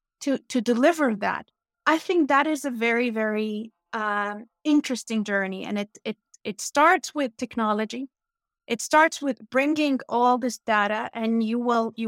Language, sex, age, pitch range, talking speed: English, female, 30-49, 225-290 Hz, 160 wpm